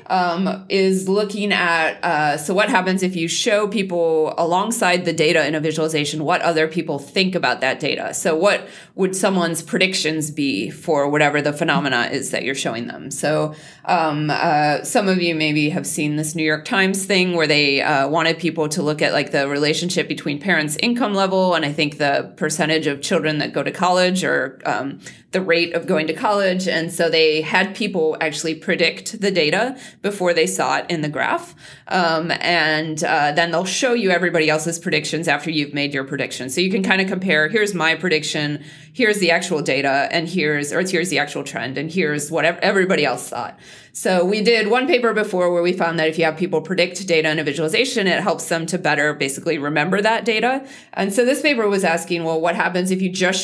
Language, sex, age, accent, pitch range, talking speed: English, female, 20-39, American, 155-190 Hz, 210 wpm